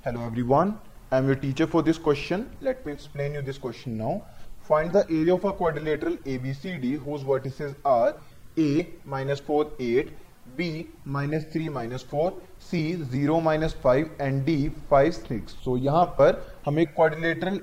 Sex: male